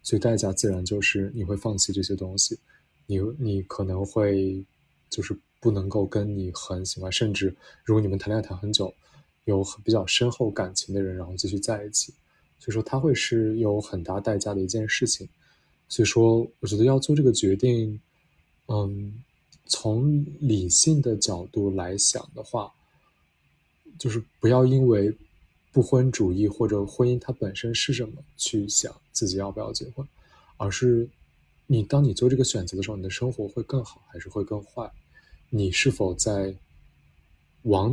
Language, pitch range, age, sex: Chinese, 100-120 Hz, 20-39, male